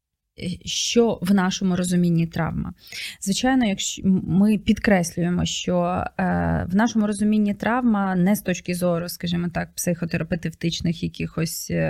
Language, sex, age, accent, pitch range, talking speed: Ukrainian, female, 20-39, native, 175-200 Hz, 110 wpm